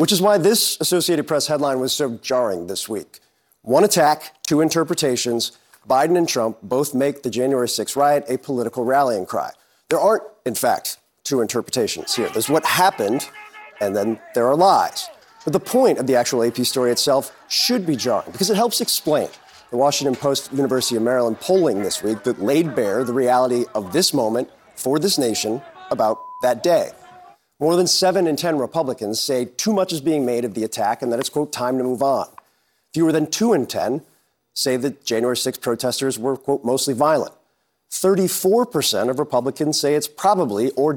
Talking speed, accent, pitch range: 185 wpm, American, 125-165 Hz